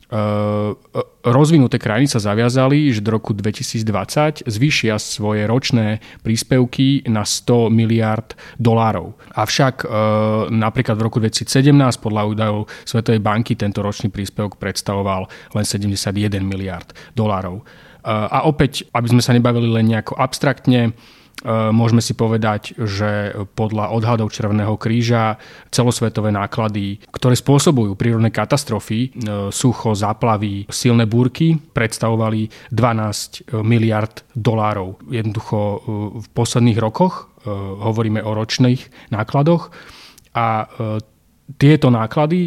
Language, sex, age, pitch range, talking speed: Slovak, male, 30-49, 105-125 Hz, 105 wpm